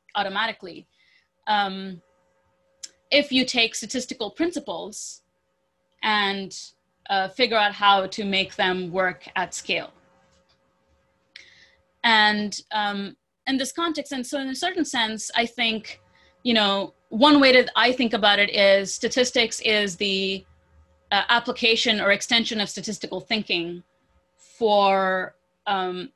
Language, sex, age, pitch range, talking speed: English, female, 30-49, 180-225 Hz, 120 wpm